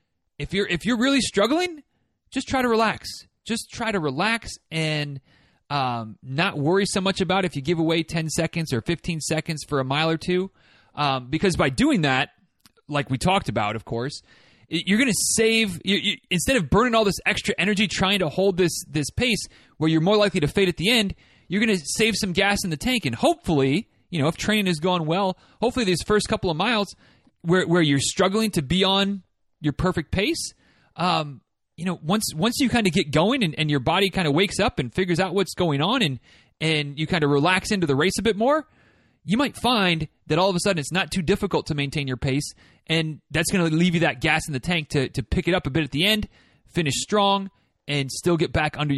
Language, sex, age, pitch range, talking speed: English, male, 30-49, 150-200 Hz, 230 wpm